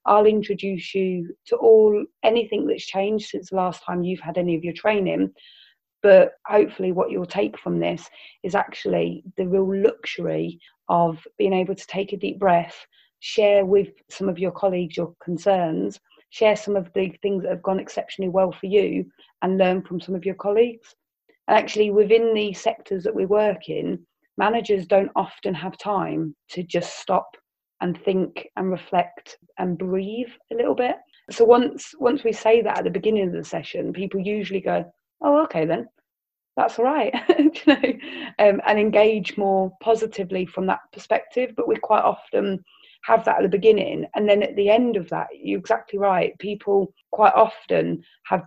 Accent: British